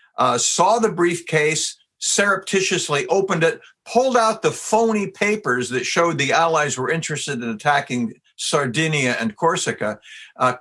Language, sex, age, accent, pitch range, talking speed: English, male, 60-79, American, 130-190 Hz, 135 wpm